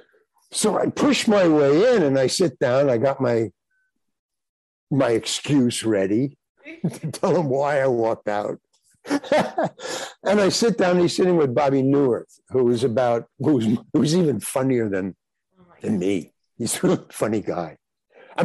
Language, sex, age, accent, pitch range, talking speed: English, male, 60-79, American, 135-210 Hz, 155 wpm